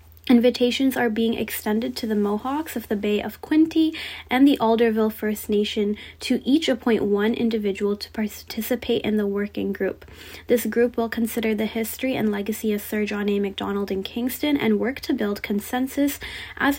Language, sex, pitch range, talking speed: English, female, 210-250 Hz, 175 wpm